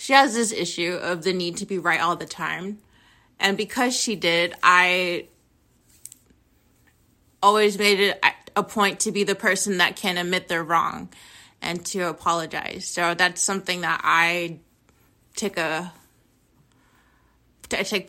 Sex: female